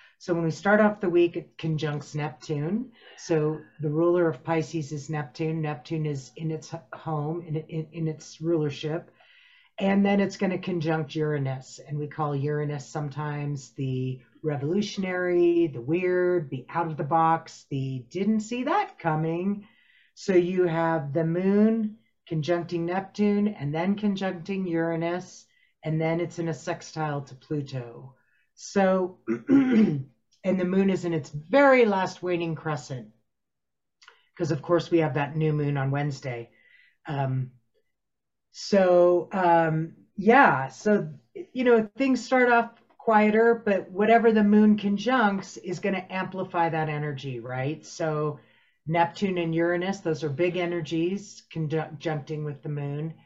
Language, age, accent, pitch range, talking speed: English, 40-59, American, 150-190 Hz, 145 wpm